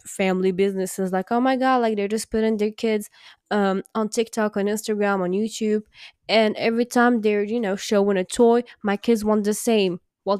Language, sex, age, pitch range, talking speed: English, female, 10-29, 180-230 Hz, 195 wpm